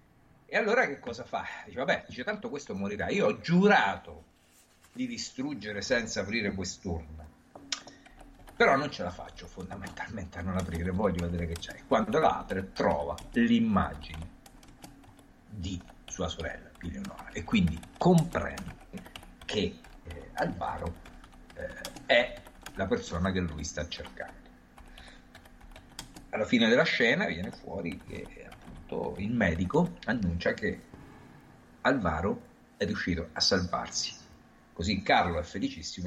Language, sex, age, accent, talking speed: Italian, male, 50-69, native, 125 wpm